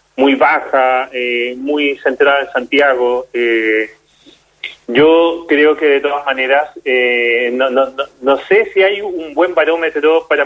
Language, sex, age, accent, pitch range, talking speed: Spanish, male, 30-49, Argentinian, 135-165 Hz, 150 wpm